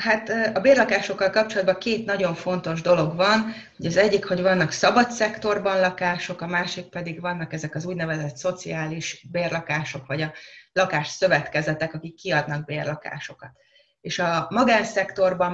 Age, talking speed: 30-49, 130 wpm